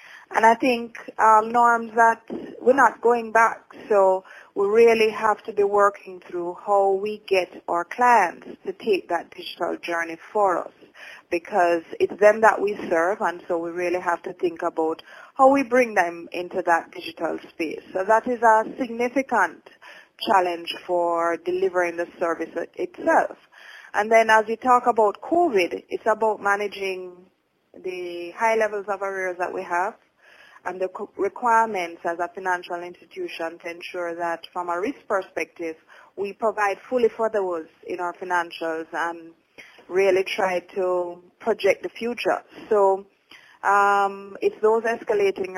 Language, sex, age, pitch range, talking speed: English, female, 30-49, 180-235 Hz, 150 wpm